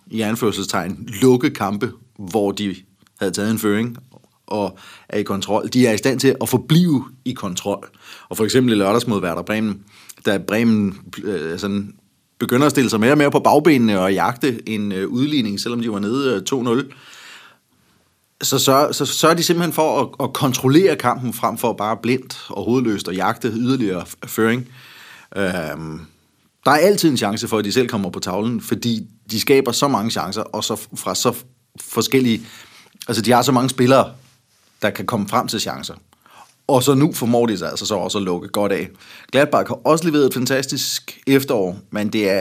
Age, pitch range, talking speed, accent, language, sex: 30-49, 105-130 Hz, 190 wpm, native, Danish, male